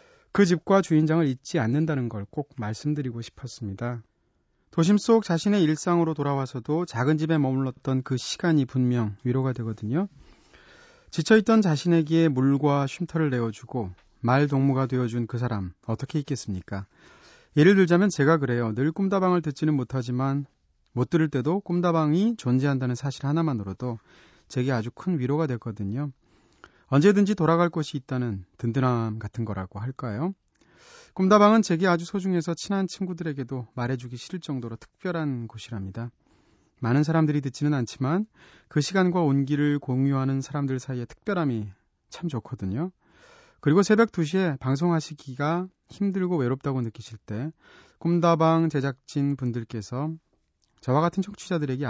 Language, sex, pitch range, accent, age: Korean, male, 125-170 Hz, native, 30-49